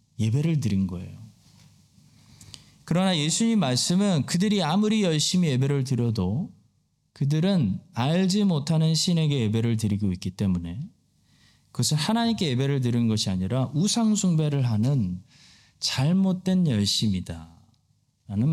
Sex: male